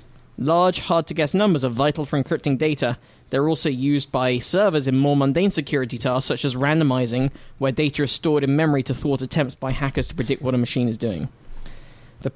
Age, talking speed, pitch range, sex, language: 20-39, 195 wpm, 125-155 Hz, male, English